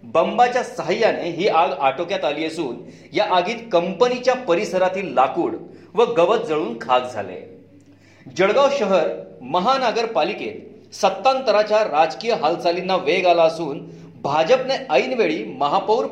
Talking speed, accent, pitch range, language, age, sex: 110 wpm, native, 165-215 Hz, Marathi, 40-59, male